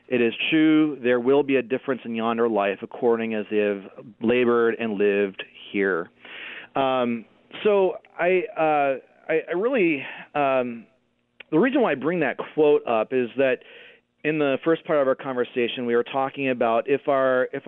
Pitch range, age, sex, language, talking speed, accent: 120-145 Hz, 40-59, male, English, 175 wpm, American